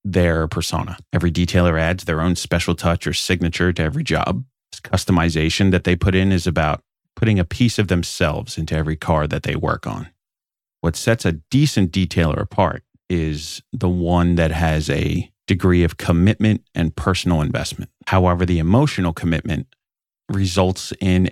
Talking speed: 160 wpm